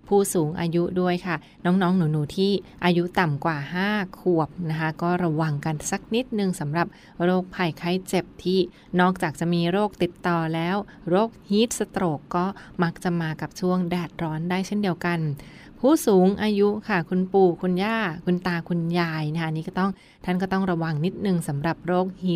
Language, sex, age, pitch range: Thai, female, 20-39, 170-195 Hz